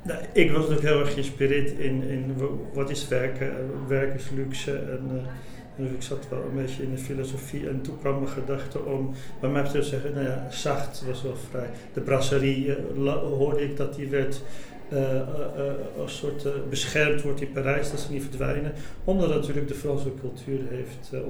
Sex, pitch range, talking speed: male, 135-150 Hz, 190 wpm